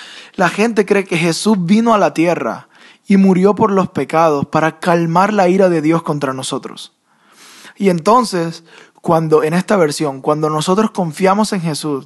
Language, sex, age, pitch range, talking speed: Spanish, male, 20-39, 150-195 Hz, 165 wpm